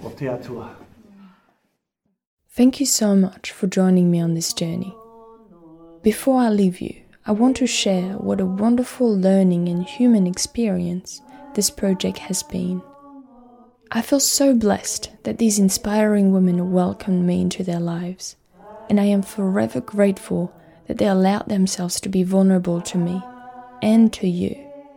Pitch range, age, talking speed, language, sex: 185-230 Hz, 20-39, 140 wpm, English, female